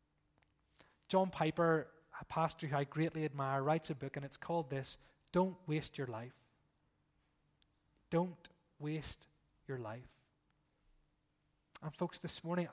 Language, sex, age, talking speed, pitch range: English, male, 20-39, 125 wpm, 140-170 Hz